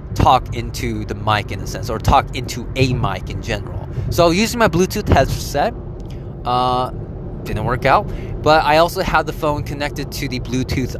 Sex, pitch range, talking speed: male, 120-170 Hz, 180 wpm